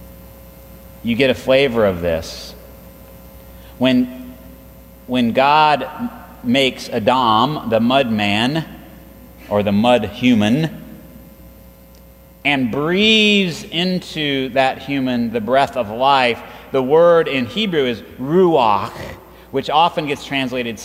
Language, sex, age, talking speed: English, male, 30-49, 105 wpm